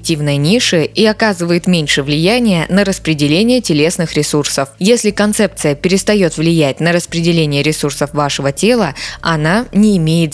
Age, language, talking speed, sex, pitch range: 20-39, Russian, 120 wpm, female, 155-210 Hz